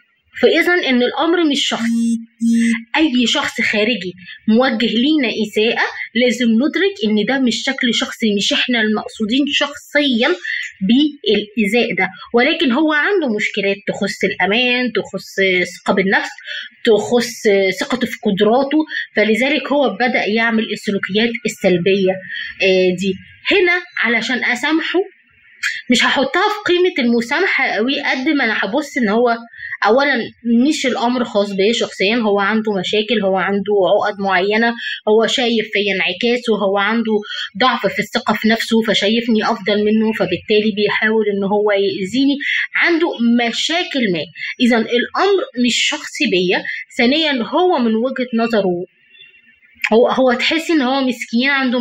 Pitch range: 210-265 Hz